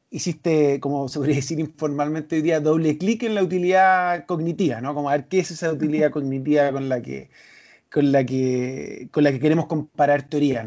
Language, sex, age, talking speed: Spanish, male, 30-49, 195 wpm